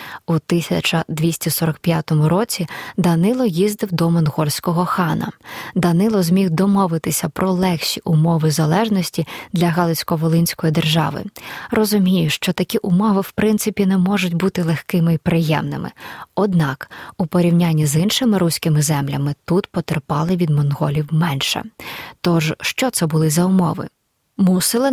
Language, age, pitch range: Ukrainian, 20-39, 160-195 Hz